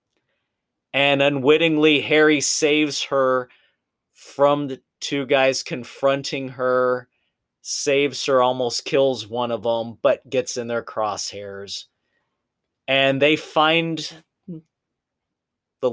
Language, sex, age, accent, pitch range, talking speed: English, male, 30-49, American, 120-140 Hz, 100 wpm